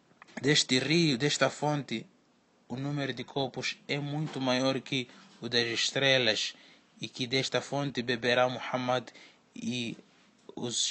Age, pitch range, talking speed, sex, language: 20-39, 125-140 Hz, 125 wpm, male, Portuguese